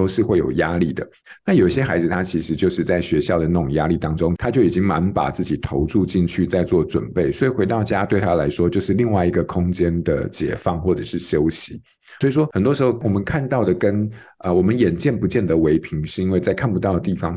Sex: male